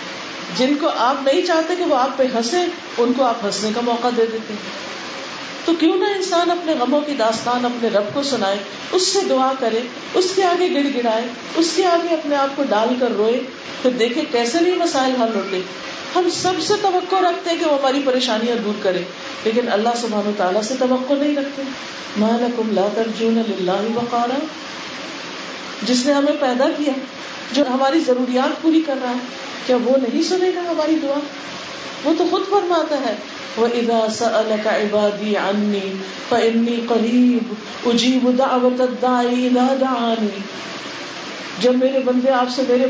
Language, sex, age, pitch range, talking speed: Urdu, female, 50-69, 235-305 Hz, 160 wpm